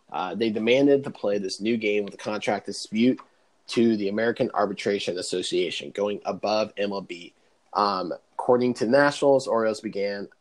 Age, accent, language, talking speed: 20-39, American, English, 150 wpm